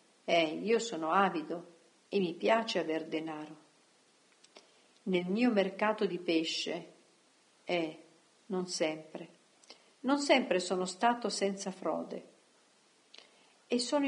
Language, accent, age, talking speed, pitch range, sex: Italian, native, 50-69, 105 wpm, 170-235 Hz, female